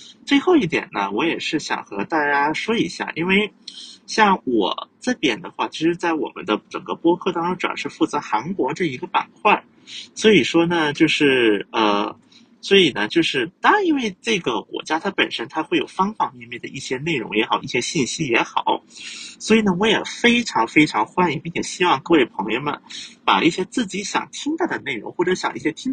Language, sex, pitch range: Chinese, male, 165-250 Hz